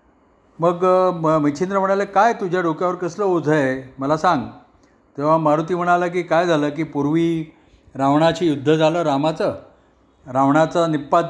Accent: native